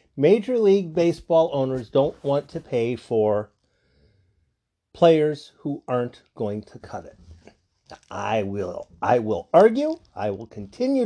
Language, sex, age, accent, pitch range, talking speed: English, male, 40-59, American, 100-165 Hz, 130 wpm